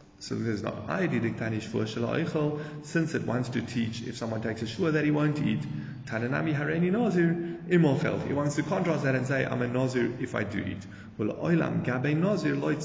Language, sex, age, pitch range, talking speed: English, male, 20-39, 110-145 Hz, 165 wpm